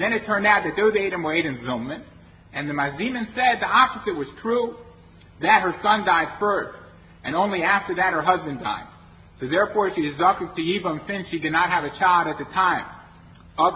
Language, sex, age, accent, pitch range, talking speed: English, male, 50-69, American, 150-210 Hz, 205 wpm